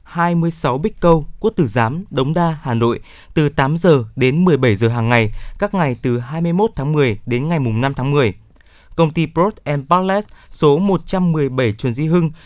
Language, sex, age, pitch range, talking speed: Vietnamese, male, 20-39, 125-170 Hz, 195 wpm